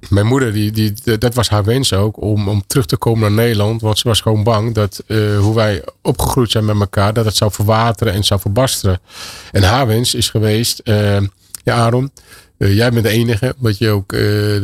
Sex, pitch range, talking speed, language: male, 100-115 Hz, 210 wpm, Dutch